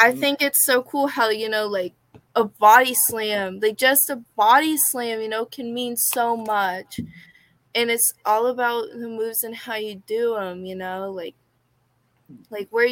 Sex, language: female, English